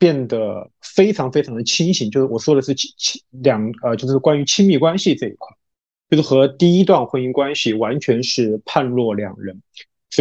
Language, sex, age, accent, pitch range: Chinese, male, 20-39, native, 115-150 Hz